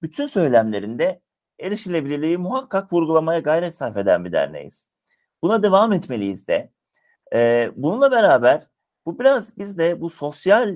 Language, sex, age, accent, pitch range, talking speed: Turkish, male, 50-69, native, 110-170 Hz, 130 wpm